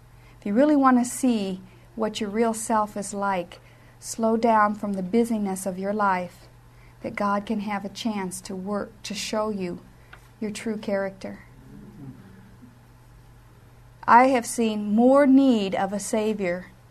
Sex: female